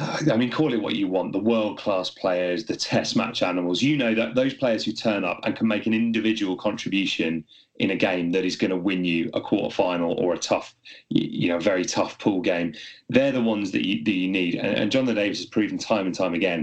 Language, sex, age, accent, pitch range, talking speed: English, male, 30-49, British, 90-115 Hz, 240 wpm